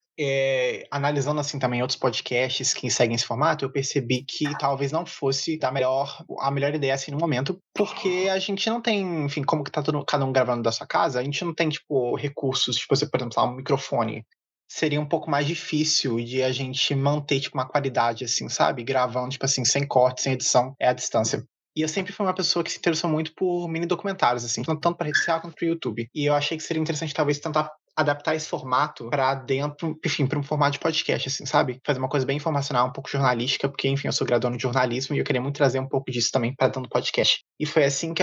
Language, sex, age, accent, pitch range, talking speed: Portuguese, male, 20-39, Brazilian, 130-160 Hz, 240 wpm